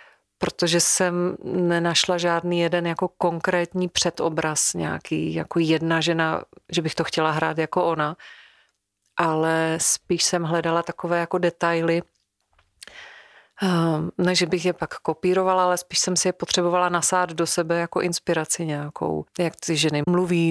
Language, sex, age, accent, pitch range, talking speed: Czech, female, 40-59, native, 165-180 Hz, 135 wpm